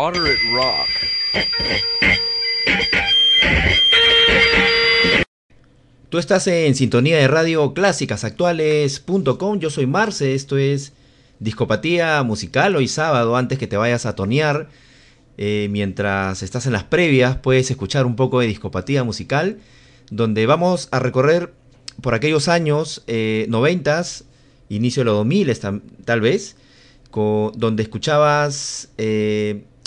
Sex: male